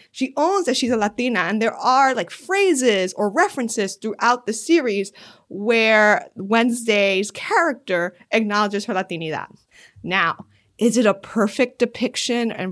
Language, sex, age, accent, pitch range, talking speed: English, female, 20-39, American, 195-255 Hz, 135 wpm